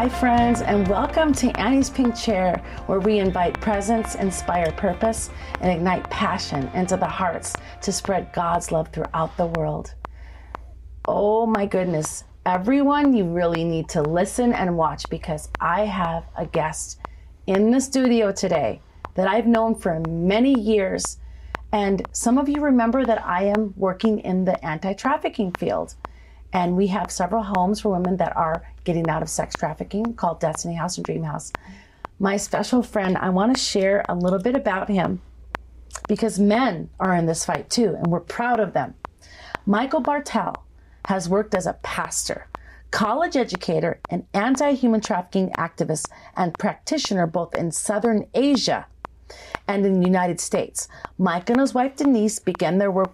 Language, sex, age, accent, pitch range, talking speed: English, female, 30-49, American, 180-230 Hz, 160 wpm